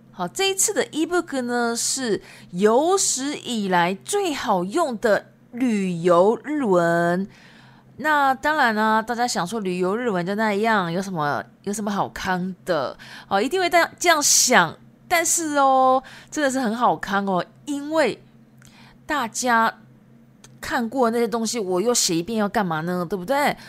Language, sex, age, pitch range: Japanese, female, 20-39, 185-270 Hz